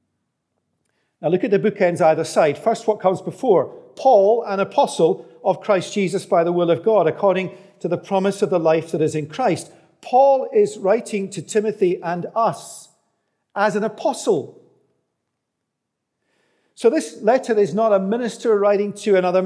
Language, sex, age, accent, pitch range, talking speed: English, male, 50-69, British, 175-220 Hz, 165 wpm